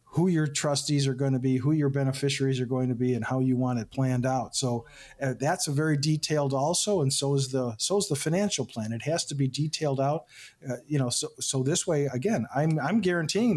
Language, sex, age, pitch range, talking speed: English, male, 40-59, 125-145 Hz, 240 wpm